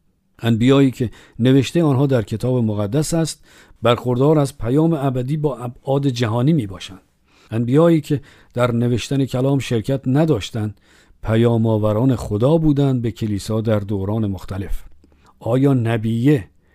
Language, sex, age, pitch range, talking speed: Persian, male, 50-69, 110-145 Hz, 125 wpm